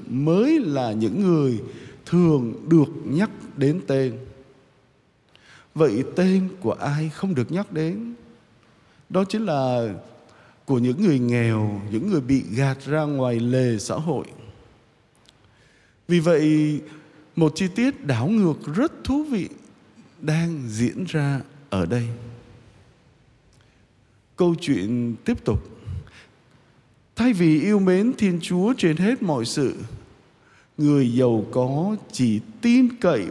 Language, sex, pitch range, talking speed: Vietnamese, male, 120-170 Hz, 125 wpm